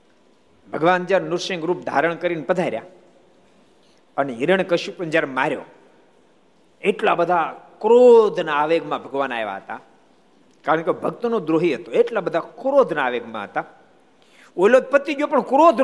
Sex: male